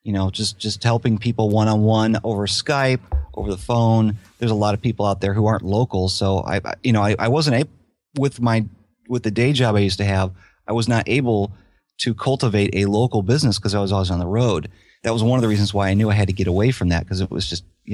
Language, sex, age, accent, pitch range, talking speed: English, male, 30-49, American, 95-120 Hz, 260 wpm